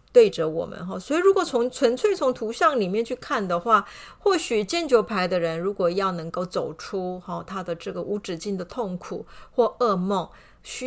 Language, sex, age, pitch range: Chinese, female, 30-49, 175-230 Hz